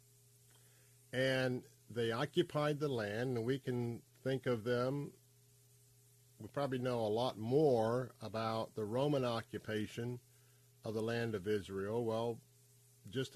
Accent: American